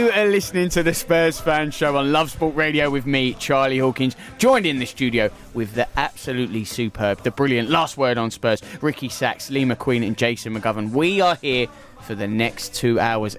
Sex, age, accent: male, 20-39, British